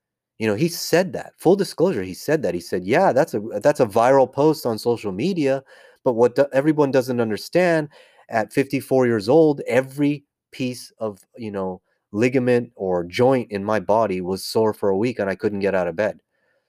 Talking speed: 200 wpm